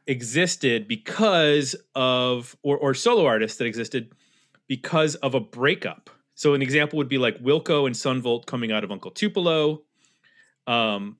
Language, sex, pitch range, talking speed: English, male, 120-155 Hz, 150 wpm